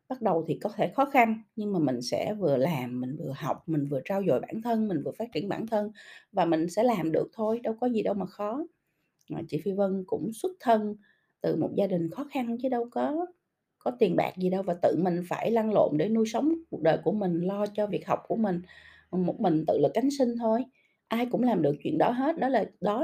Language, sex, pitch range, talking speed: Vietnamese, female, 170-230 Hz, 255 wpm